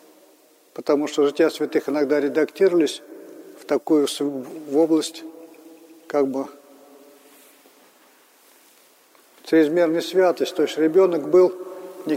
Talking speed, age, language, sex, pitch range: 90 wpm, 50-69, Russian, male, 155-185 Hz